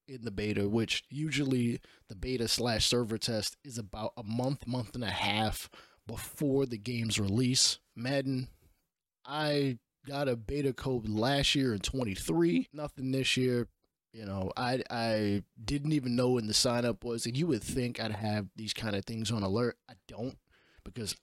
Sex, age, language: male, 20-39, English